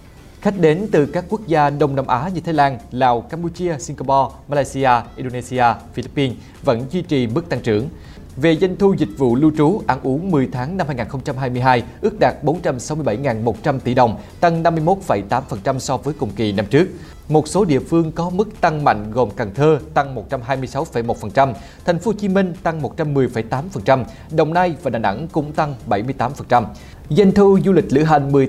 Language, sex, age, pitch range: Vietnamese, male, 20-39, 125-165 Hz